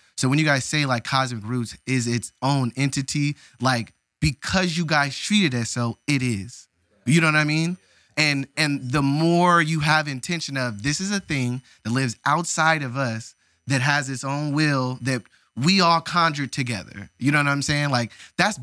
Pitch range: 110-145 Hz